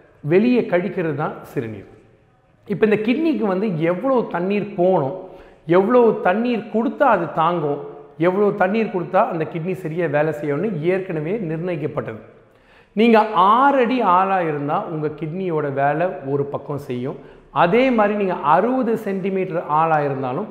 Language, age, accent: Tamil, 40-59, native